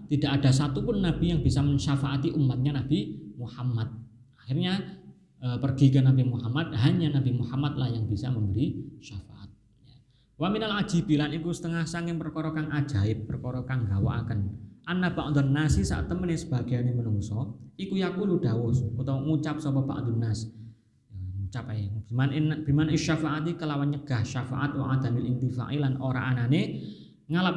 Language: Indonesian